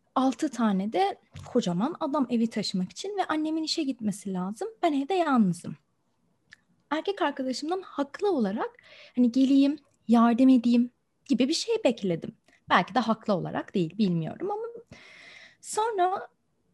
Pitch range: 225-315 Hz